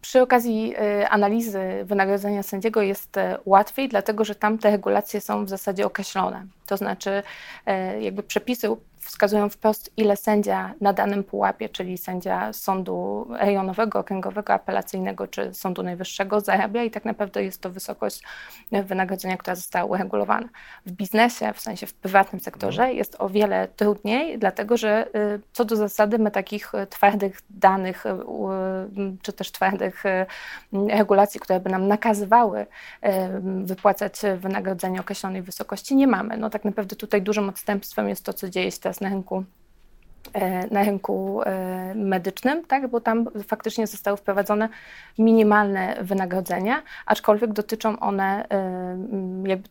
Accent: native